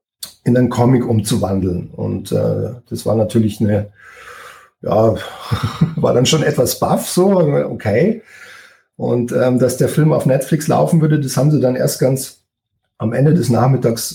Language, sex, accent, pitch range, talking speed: German, male, German, 115-150 Hz, 155 wpm